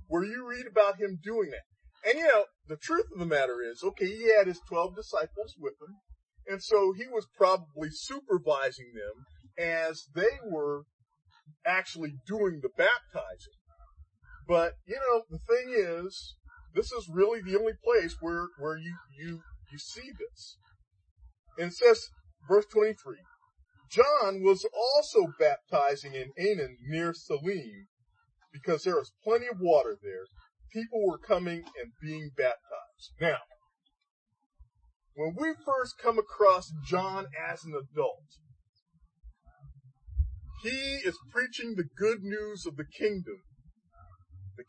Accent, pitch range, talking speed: American, 150-240 Hz, 140 wpm